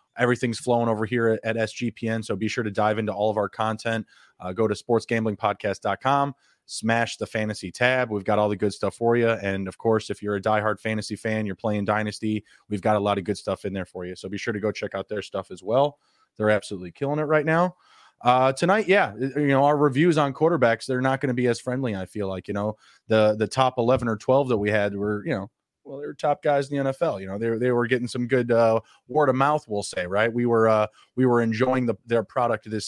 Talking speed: 250 wpm